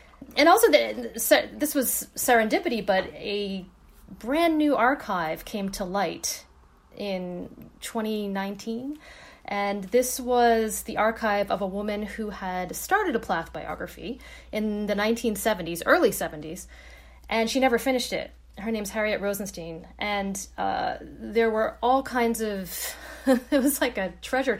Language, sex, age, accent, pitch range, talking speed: English, female, 30-49, American, 185-245 Hz, 135 wpm